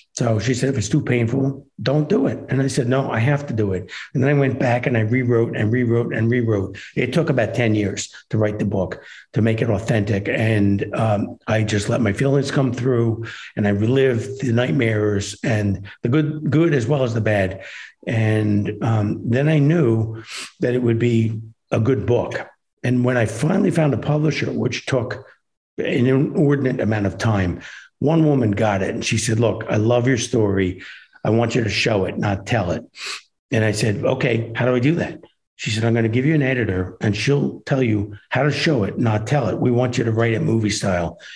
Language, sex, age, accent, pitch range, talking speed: English, male, 60-79, American, 110-135 Hz, 220 wpm